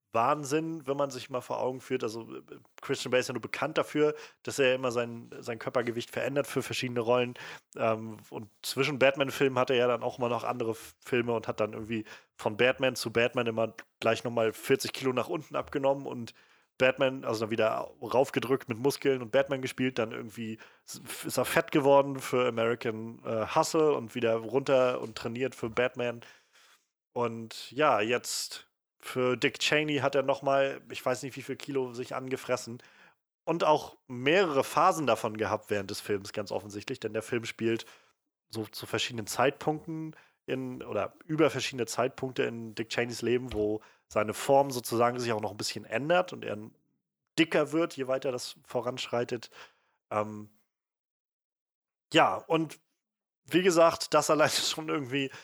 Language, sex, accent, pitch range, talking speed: German, male, German, 115-135 Hz, 170 wpm